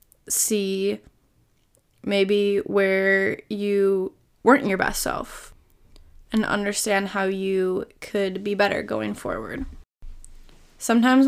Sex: female